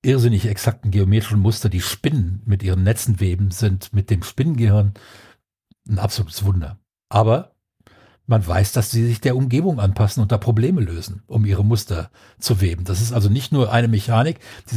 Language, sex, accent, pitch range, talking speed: German, male, German, 100-125 Hz, 175 wpm